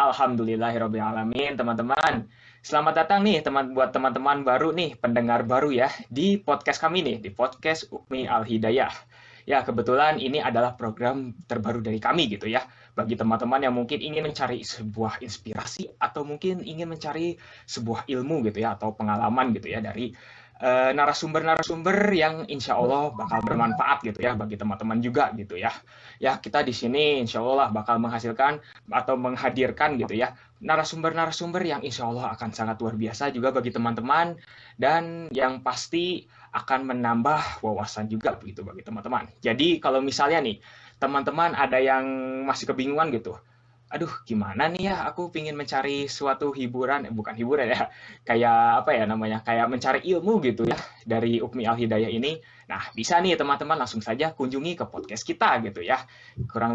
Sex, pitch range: male, 115-155 Hz